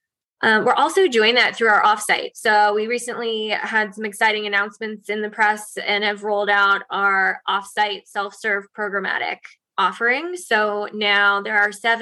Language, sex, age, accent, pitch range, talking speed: English, female, 20-39, American, 200-220 Hz, 155 wpm